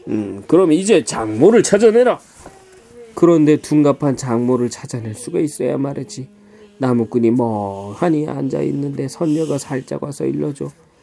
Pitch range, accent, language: 120-175 Hz, native, Korean